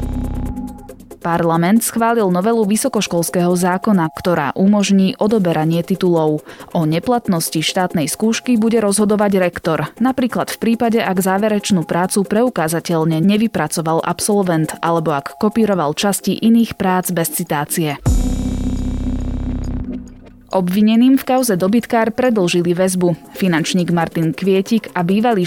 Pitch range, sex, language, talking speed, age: 165-215 Hz, female, Slovak, 105 wpm, 20-39